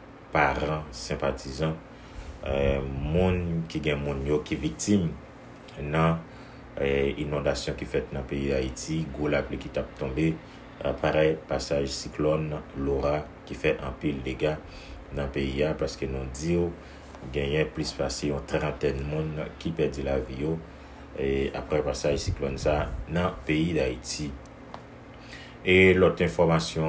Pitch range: 70-80 Hz